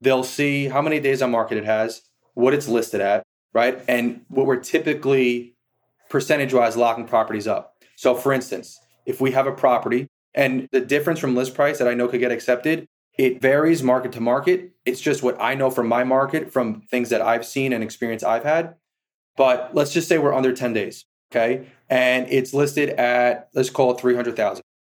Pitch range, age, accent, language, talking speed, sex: 120-145 Hz, 20-39, American, English, 195 wpm, male